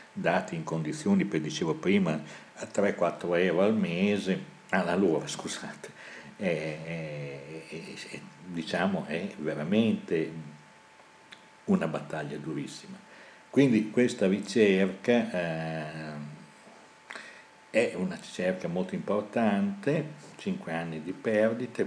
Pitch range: 80-115 Hz